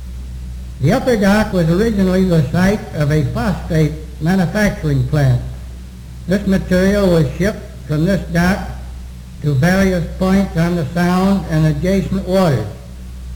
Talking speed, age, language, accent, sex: 125 wpm, 60-79, English, American, male